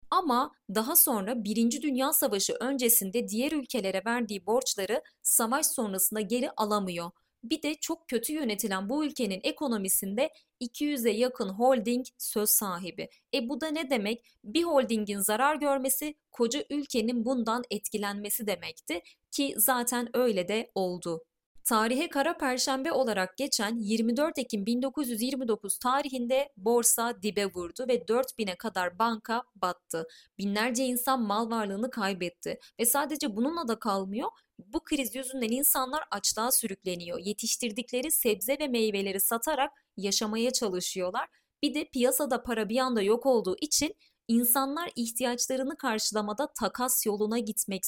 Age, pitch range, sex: 30-49, 210-265 Hz, female